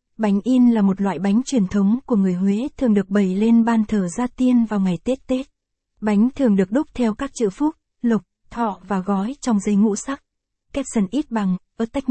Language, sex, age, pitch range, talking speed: Vietnamese, female, 20-39, 200-240 Hz, 215 wpm